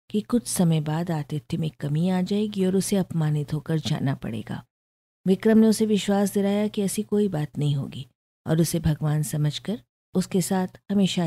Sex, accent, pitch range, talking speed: female, native, 145-190 Hz, 175 wpm